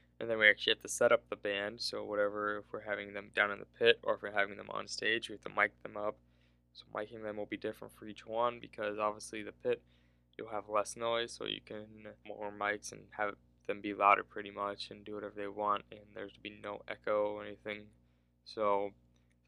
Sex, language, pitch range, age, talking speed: male, English, 100-110 Hz, 10-29, 235 wpm